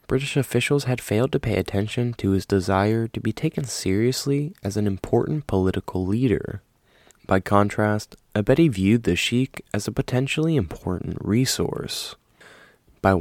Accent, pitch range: American, 95-130 Hz